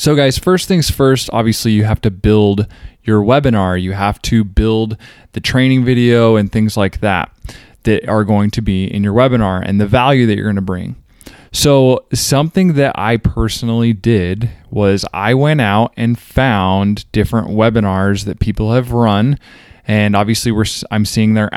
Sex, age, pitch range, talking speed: male, 20-39, 105-125 Hz, 170 wpm